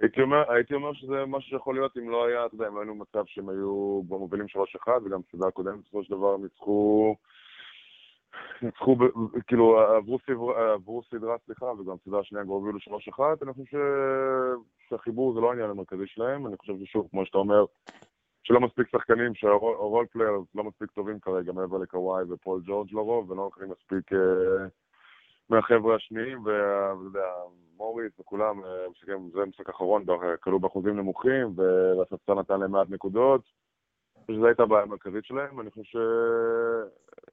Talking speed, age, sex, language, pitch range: 155 wpm, 20-39, male, Hebrew, 95-115 Hz